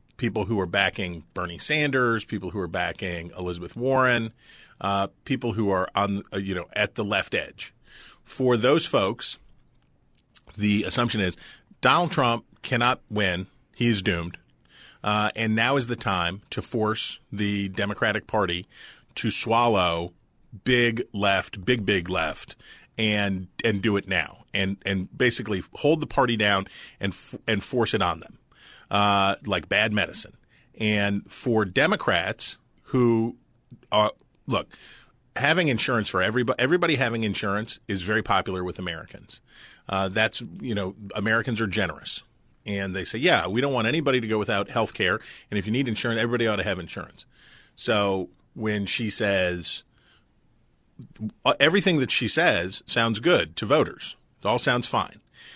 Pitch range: 95-120 Hz